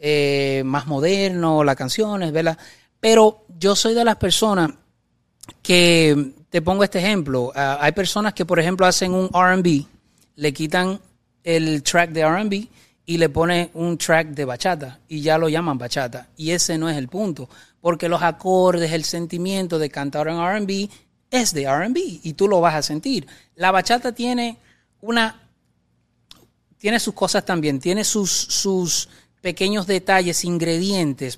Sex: male